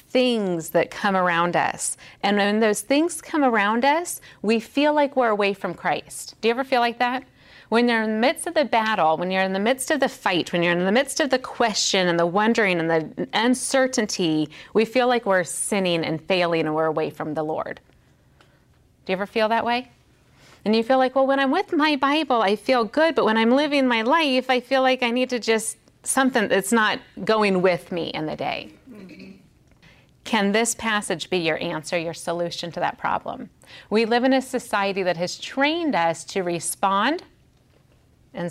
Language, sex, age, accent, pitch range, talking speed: English, female, 30-49, American, 175-250 Hz, 205 wpm